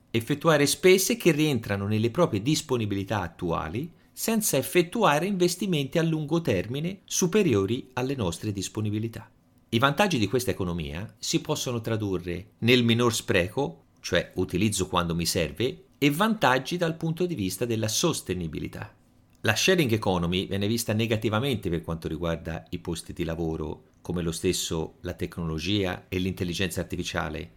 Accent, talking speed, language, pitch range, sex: native, 135 wpm, Italian, 95-130 Hz, male